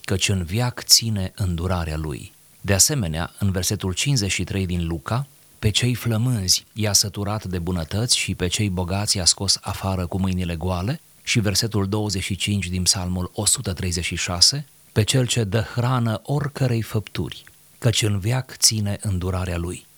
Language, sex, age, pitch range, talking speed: Romanian, male, 30-49, 90-115 Hz, 145 wpm